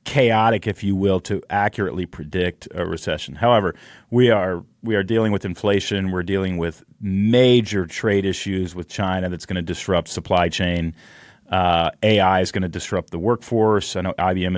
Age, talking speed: 30-49, 175 wpm